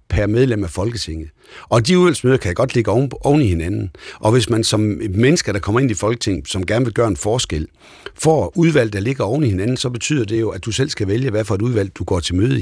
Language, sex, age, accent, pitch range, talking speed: Danish, male, 60-79, native, 100-130 Hz, 255 wpm